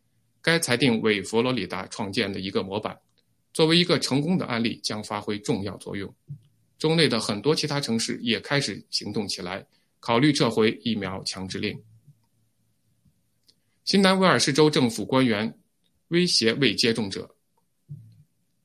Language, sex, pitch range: Chinese, male, 115-150 Hz